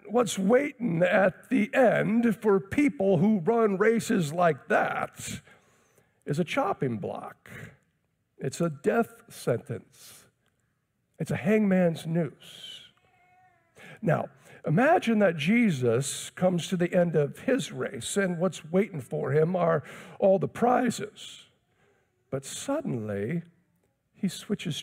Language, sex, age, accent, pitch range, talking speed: English, male, 50-69, American, 160-215 Hz, 115 wpm